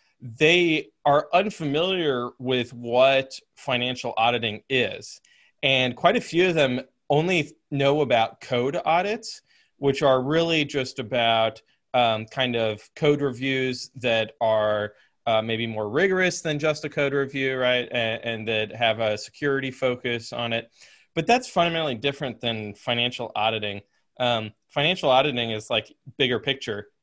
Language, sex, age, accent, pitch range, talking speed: English, male, 20-39, American, 115-145 Hz, 140 wpm